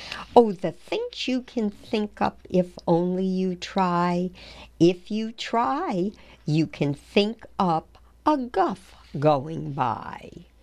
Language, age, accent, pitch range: English, 60-79, American, 165-240 Hz